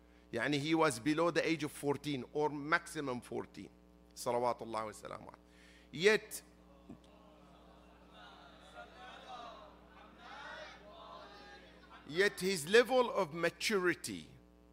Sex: male